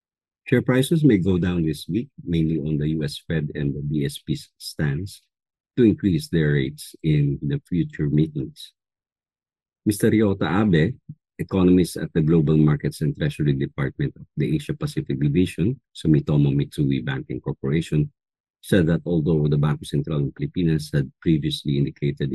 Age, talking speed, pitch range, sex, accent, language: 50-69, 145 wpm, 75-90 Hz, male, Filipino, English